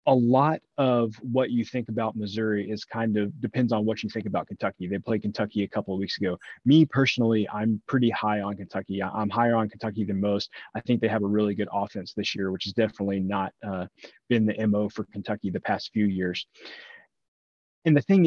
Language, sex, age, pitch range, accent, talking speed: English, male, 30-49, 100-120 Hz, American, 215 wpm